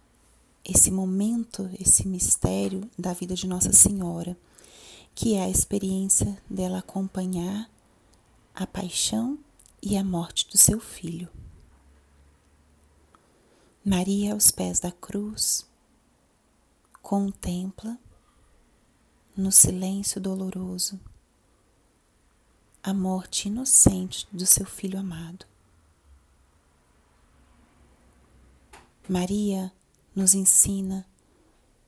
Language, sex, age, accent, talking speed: Portuguese, female, 30-49, Brazilian, 80 wpm